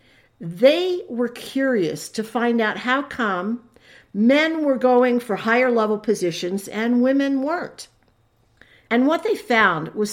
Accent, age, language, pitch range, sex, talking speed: American, 50-69, English, 180-265 Hz, female, 135 wpm